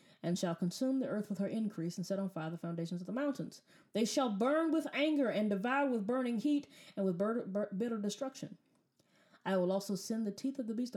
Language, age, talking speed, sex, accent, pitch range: English, 20-39, 230 wpm, female, American, 185-265 Hz